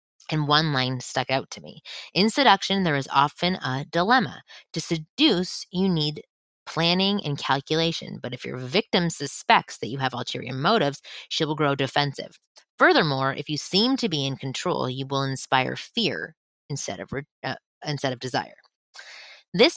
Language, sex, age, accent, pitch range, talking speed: English, female, 20-39, American, 135-180 Hz, 165 wpm